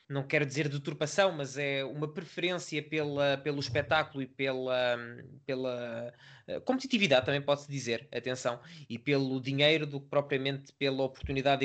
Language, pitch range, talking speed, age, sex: Portuguese, 140-165 Hz, 140 wpm, 20-39, male